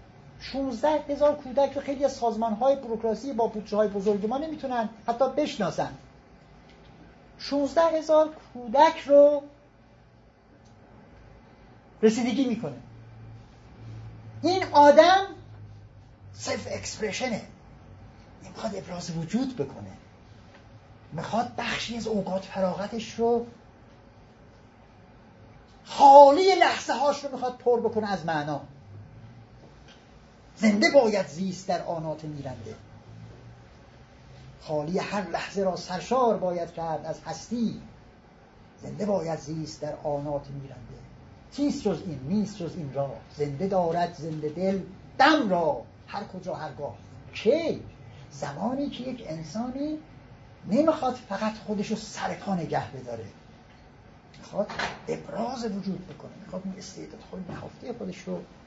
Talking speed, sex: 110 wpm, male